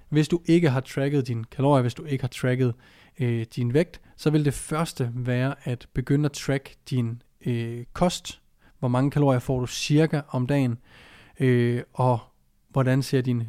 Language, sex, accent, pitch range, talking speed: Danish, male, native, 125-150 Hz, 180 wpm